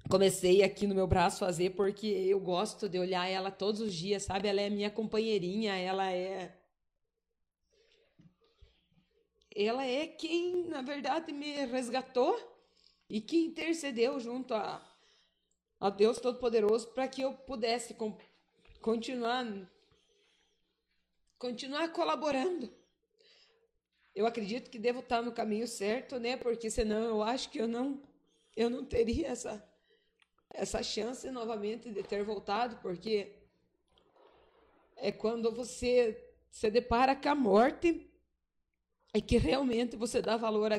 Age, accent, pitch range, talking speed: 20-39, Brazilian, 210-270 Hz, 130 wpm